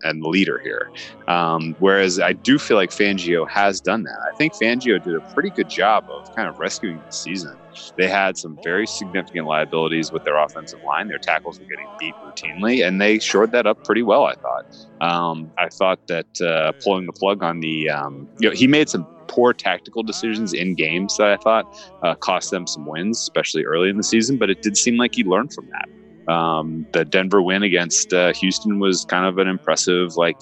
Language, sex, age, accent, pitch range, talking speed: English, male, 30-49, American, 80-100 Hz, 215 wpm